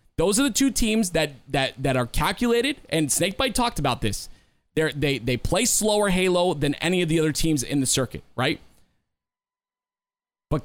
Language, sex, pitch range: English, male, 145-195 Hz